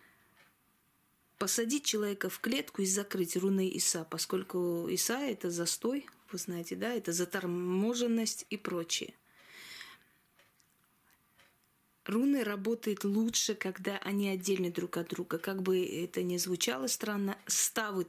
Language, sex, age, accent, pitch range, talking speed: Russian, female, 20-39, native, 180-215 Hz, 115 wpm